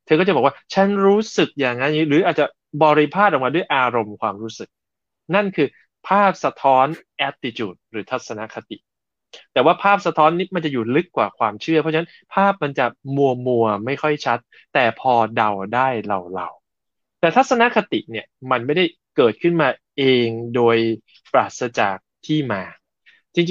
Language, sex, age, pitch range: Thai, male, 20-39, 115-160 Hz